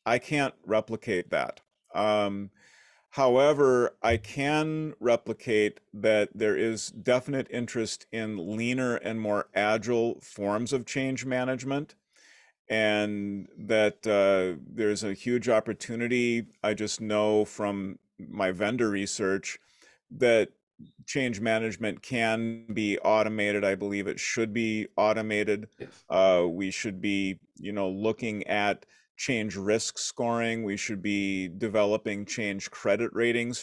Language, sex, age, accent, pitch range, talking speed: English, male, 40-59, American, 100-115 Hz, 120 wpm